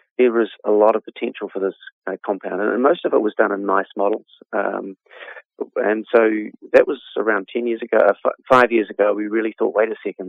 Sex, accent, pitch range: male, Australian, 100-115 Hz